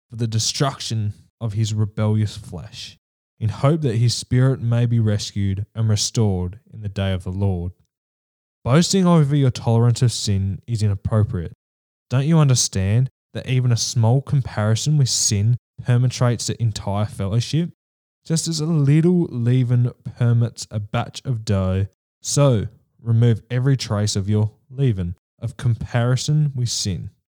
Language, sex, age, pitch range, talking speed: English, male, 10-29, 105-130 Hz, 145 wpm